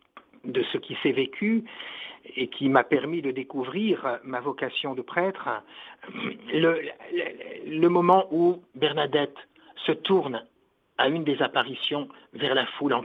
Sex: male